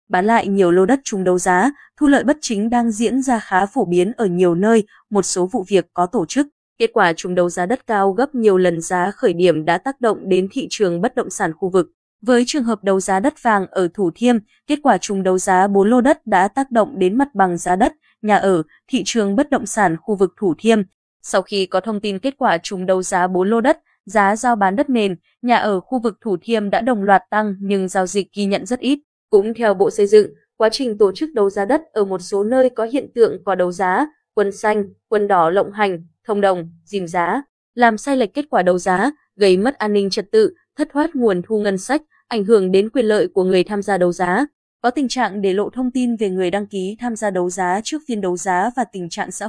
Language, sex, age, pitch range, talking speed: Vietnamese, female, 20-39, 190-245 Hz, 255 wpm